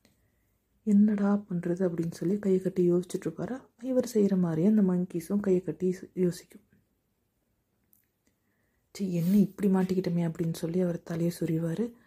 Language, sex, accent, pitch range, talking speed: Tamil, female, native, 165-195 Hz, 110 wpm